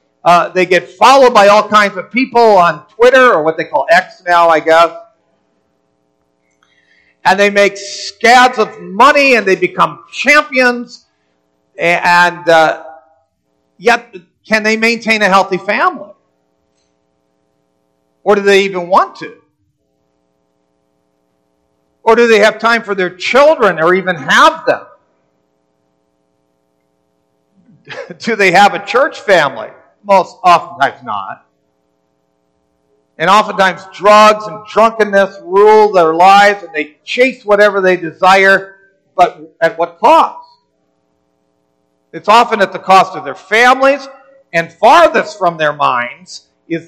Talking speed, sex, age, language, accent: 125 wpm, male, 50-69, English, American